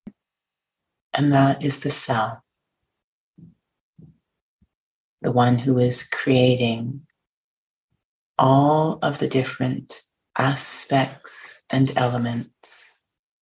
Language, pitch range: English, 125-145 Hz